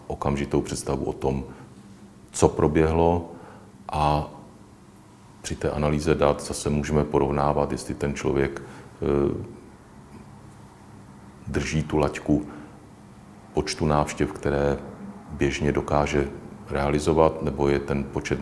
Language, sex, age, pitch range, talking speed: Czech, male, 40-59, 75-85 Hz, 100 wpm